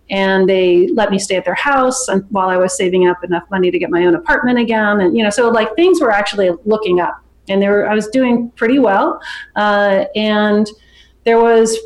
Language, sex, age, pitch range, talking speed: English, female, 30-49, 190-230 Hz, 225 wpm